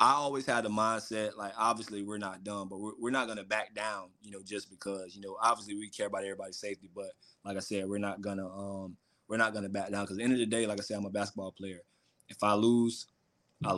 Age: 20-39